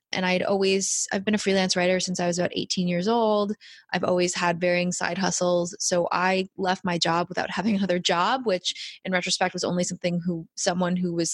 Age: 20-39